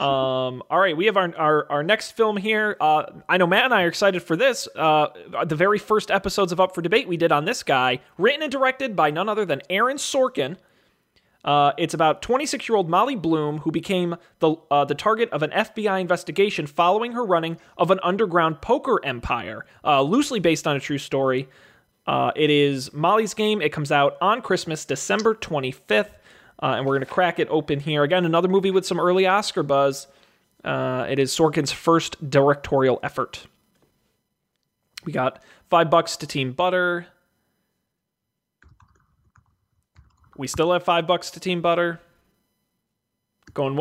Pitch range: 145-190 Hz